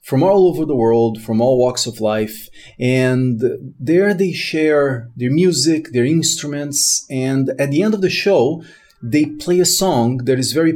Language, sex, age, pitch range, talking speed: English, male, 30-49, 120-160 Hz, 180 wpm